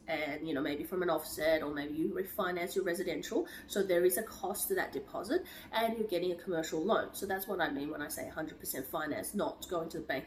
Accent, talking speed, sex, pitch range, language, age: Australian, 250 wpm, female, 185-305 Hz, English, 30-49